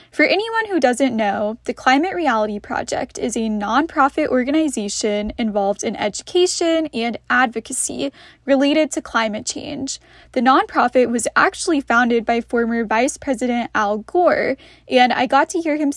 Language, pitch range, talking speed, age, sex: English, 225-305 Hz, 145 wpm, 10-29, female